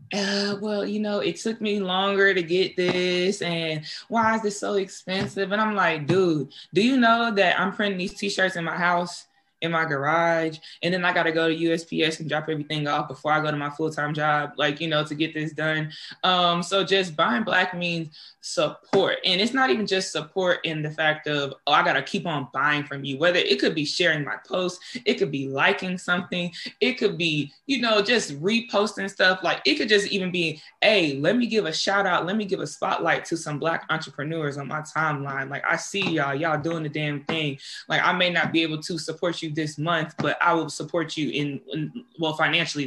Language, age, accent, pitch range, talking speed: English, 20-39, American, 150-185 Hz, 225 wpm